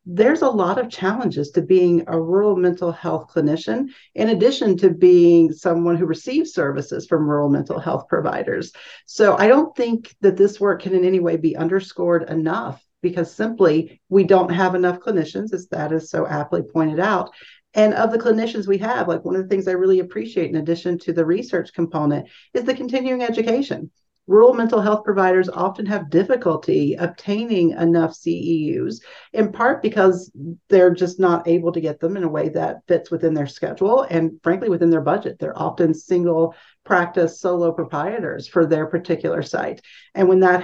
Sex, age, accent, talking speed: female, 50-69, American, 180 wpm